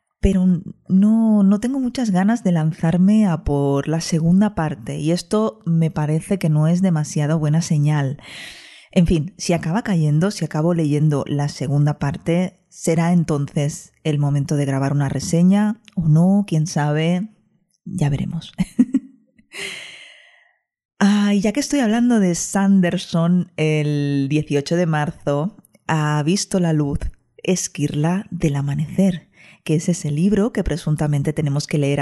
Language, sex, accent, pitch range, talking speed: Spanish, female, Spanish, 150-185 Hz, 140 wpm